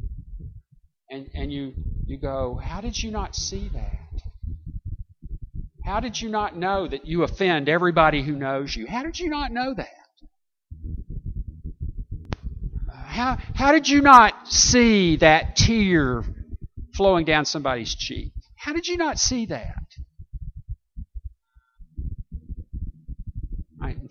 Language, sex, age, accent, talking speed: English, male, 50-69, American, 120 wpm